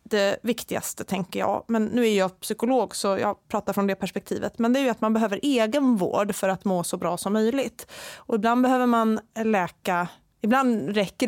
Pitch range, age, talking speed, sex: 195-235 Hz, 30-49, 200 wpm, female